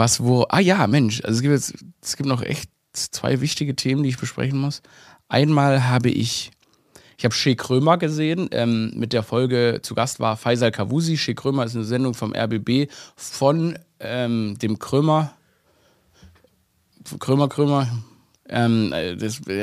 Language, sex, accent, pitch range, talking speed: German, male, German, 115-135 Hz, 145 wpm